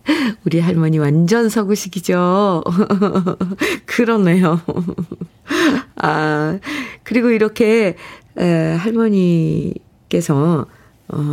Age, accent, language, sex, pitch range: 50-69, native, Korean, female, 155-220 Hz